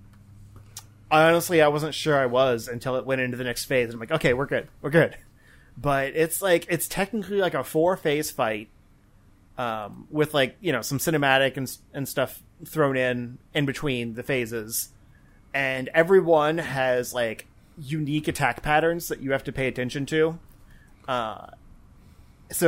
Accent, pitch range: American, 120-160 Hz